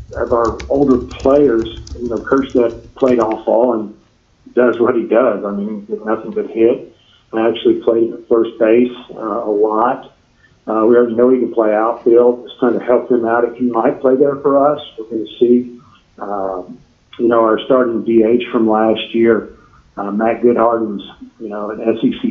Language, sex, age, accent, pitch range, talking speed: English, male, 50-69, American, 110-125 Hz, 195 wpm